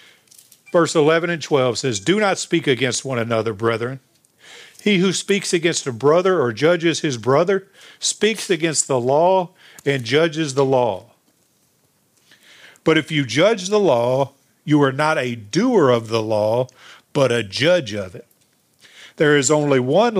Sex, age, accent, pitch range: male, 50-69, American, 120-155 Hz